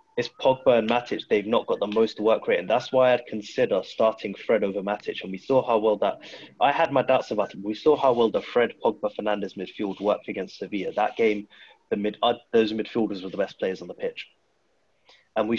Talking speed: 230 wpm